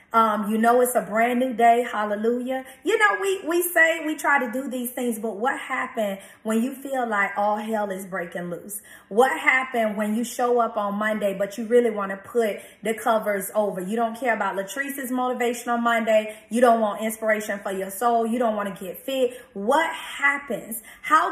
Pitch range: 225-280 Hz